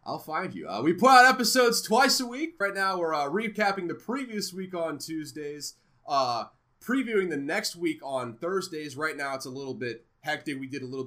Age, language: 30-49, English